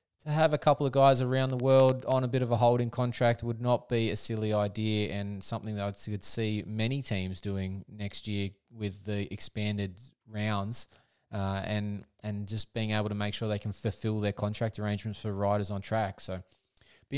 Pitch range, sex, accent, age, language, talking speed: 110-140 Hz, male, Australian, 20-39, English, 205 wpm